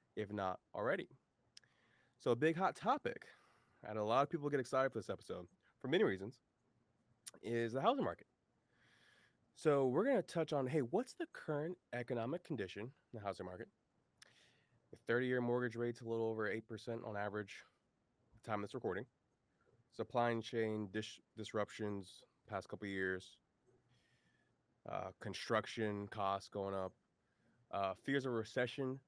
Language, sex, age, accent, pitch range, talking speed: English, male, 20-39, American, 110-135 Hz, 145 wpm